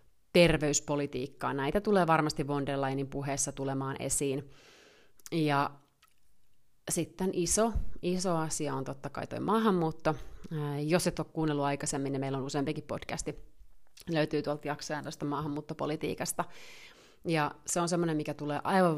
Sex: female